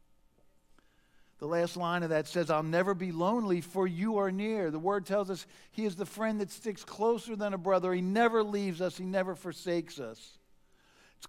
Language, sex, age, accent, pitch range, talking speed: English, male, 50-69, American, 120-180 Hz, 195 wpm